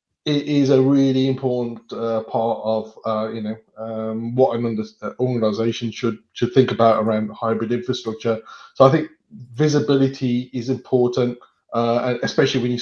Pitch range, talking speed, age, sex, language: 115-135 Hz, 155 wpm, 20-39, male, English